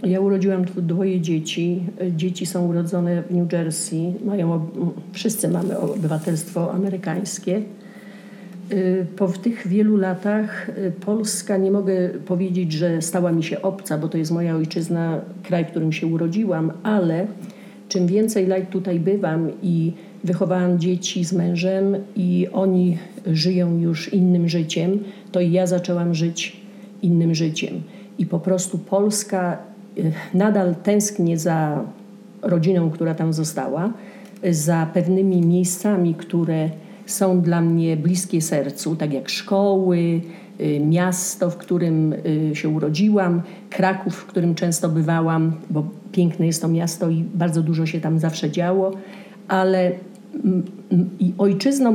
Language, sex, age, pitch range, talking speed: English, female, 50-69, 170-195 Hz, 125 wpm